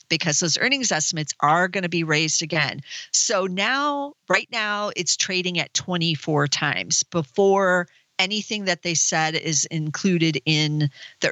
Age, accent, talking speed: 40-59, American, 150 wpm